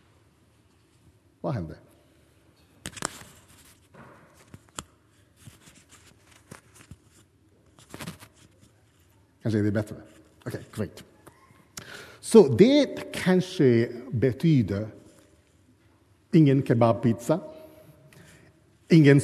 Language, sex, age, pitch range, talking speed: Swedish, male, 50-69, 110-170 Hz, 35 wpm